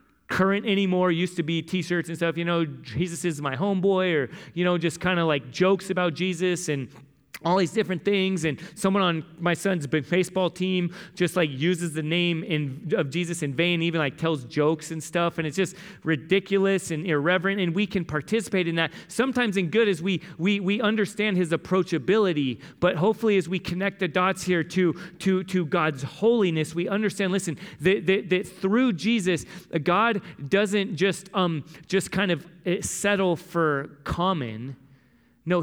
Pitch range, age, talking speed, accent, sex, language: 145-185 Hz, 30-49, 180 wpm, American, male, English